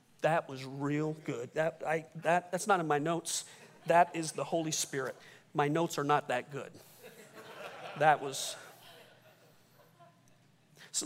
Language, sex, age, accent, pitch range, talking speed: English, male, 40-59, American, 150-185 Hz, 140 wpm